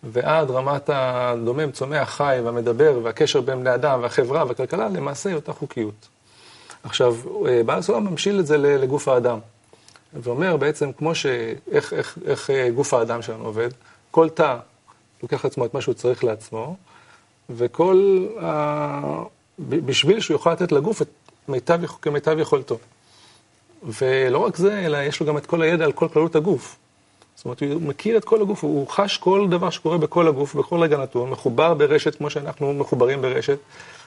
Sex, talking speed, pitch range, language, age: male, 165 wpm, 120-170 Hz, Hebrew, 40-59